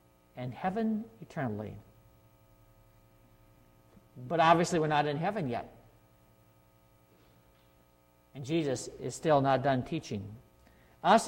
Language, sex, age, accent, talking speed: English, male, 50-69, American, 95 wpm